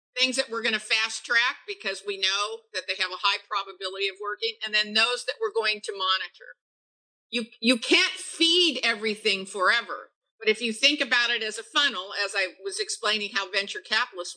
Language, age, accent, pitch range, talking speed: English, 50-69, American, 205-295 Hz, 200 wpm